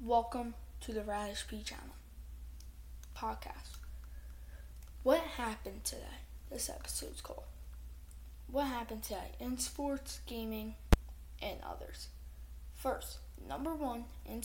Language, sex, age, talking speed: English, female, 10-29, 105 wpm